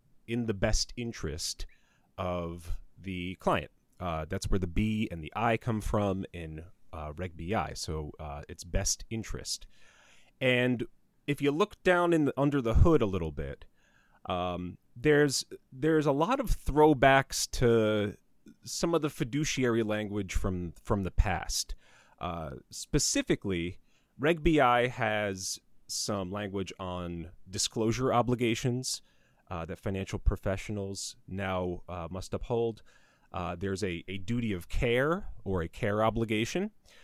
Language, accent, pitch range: English, American, 90-125 Hz